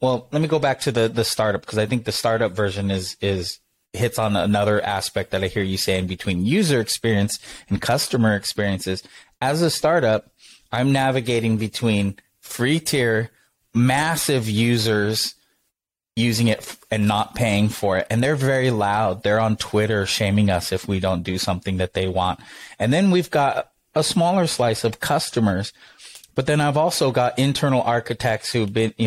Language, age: English, 30-49